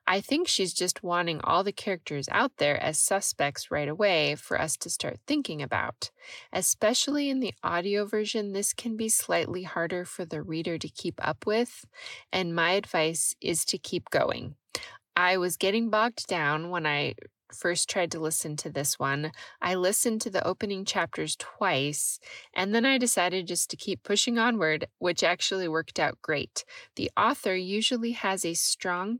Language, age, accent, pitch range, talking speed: English, 20-39, American, 160-210 Hz, 175 wpm